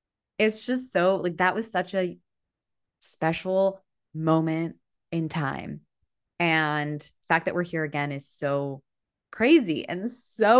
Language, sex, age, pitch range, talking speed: English, female, 20-39, 140-180 Hz, 135 wpm